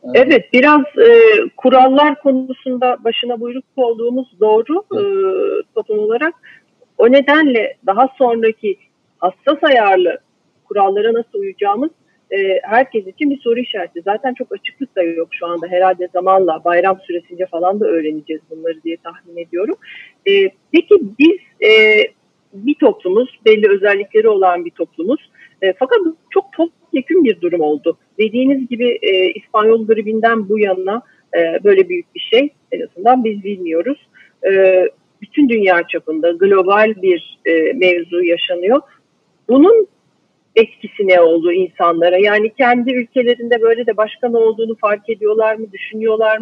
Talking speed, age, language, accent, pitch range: 135 wpm, 50-69, Turkish, native, 190-295 Hz